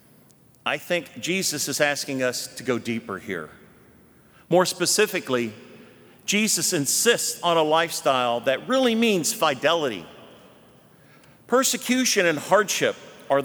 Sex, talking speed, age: male, 110 wpm, 50-69